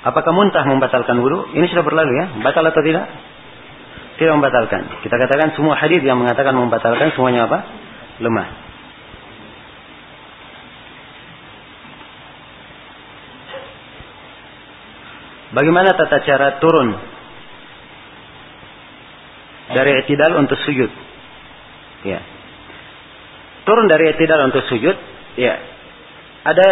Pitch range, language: 130-160 Hz, Malay